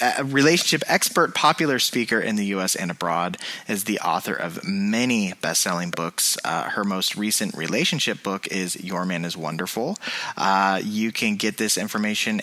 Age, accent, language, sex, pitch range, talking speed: 30-49, American, English, male, 100-125 Hz, 170 wpm